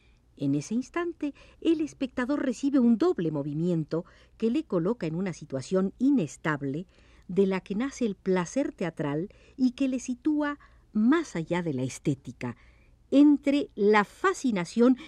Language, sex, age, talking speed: Spanish, female, 50-69, 140 wpm